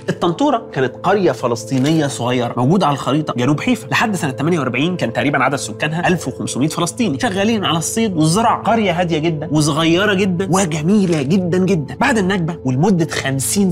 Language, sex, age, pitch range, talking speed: Arabic, male, 30-49, 145-205 Hz, 155 wpm